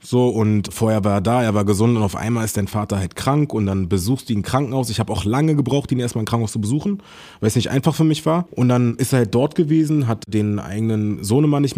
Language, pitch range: German, 110-145 Hz